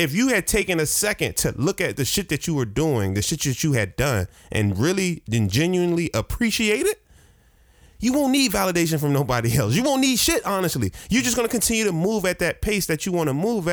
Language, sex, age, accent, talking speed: English, male, 20-39, American, 230 wpm